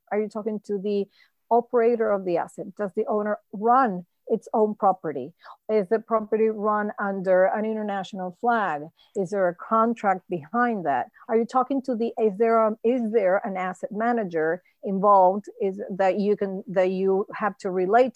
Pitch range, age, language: 190-235 Hz, 40-59, English